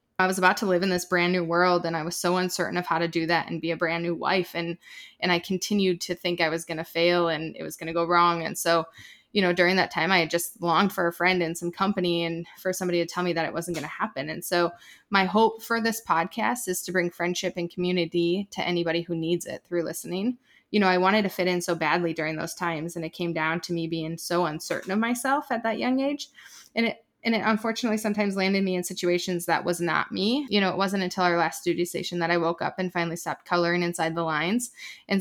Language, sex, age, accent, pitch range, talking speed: English, female, 20-39, American, 170-195 Hz, 265 wpm